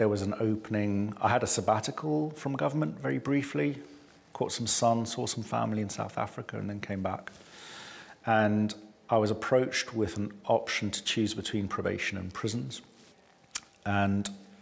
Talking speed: 160 wpm